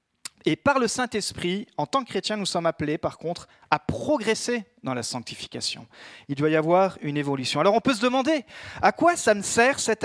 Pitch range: 155-235 Hz